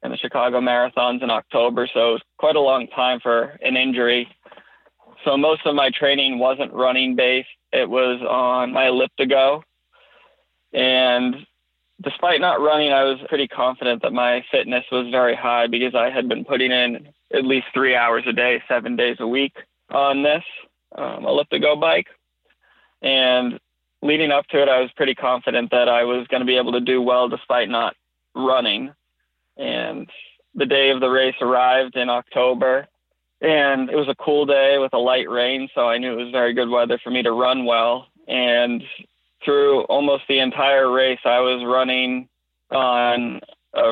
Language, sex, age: English, male, 20-39